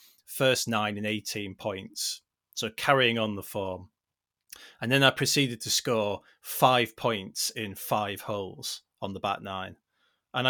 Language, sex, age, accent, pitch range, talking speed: English, male, 30-49, British, 105-130 Hz, 150 wpm